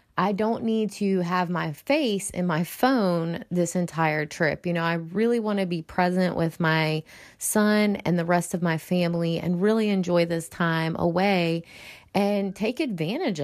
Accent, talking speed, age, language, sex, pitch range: American, 175 wpm, 30-49, English, female, 160-190 Hz